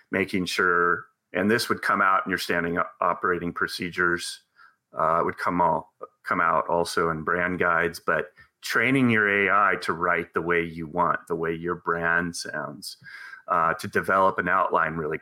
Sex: male